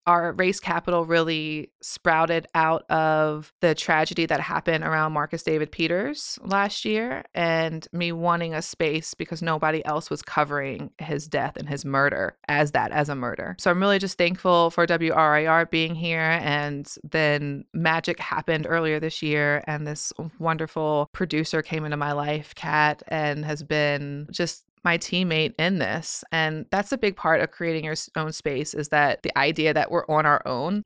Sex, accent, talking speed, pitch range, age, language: female, American, 175 wpm, 150-175 Hz, 20-39, English